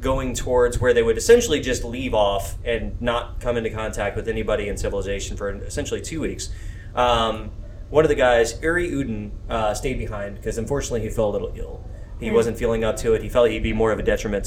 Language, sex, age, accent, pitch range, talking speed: English, male, 20-39, American, 105-125 Hz, 220 wpm